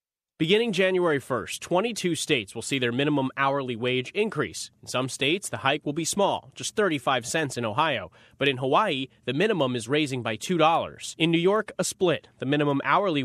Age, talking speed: 30-49, 190 wpm